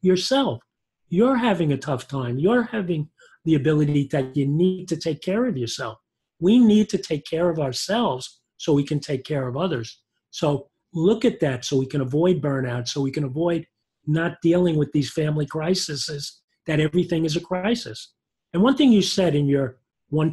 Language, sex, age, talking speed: English, male, 40-59, 190 wpm